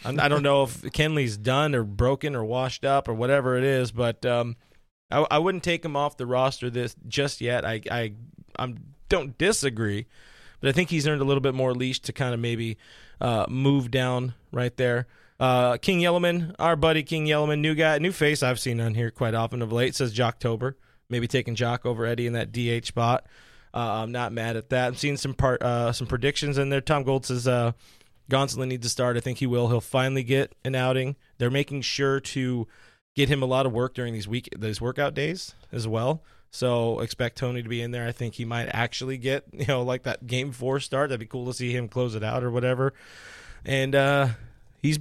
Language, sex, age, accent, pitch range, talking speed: English, male, 20-39, American, 120-140 Hz, 225 wpm